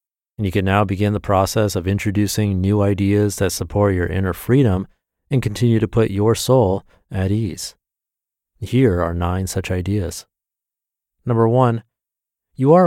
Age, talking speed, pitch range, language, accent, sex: 30-49, 155 wpm, 95-125 Hz, English, American, male